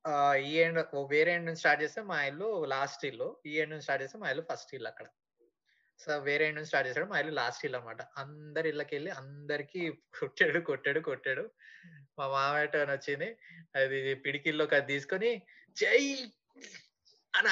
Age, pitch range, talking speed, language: 20-39, 150-220 Hz, 145 wpm, Telugu